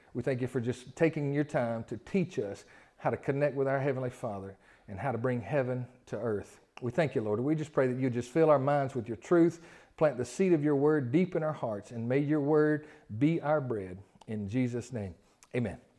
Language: English